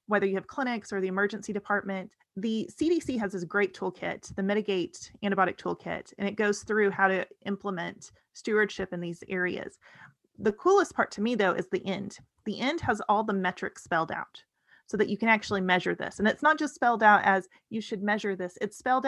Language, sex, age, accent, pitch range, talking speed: English, female, 30-49, American, 195-225 Hz, 210 wpm